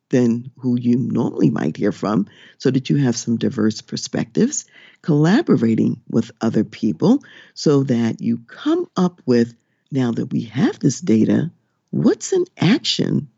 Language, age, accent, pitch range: English, 50-69, American, 115-185 Hz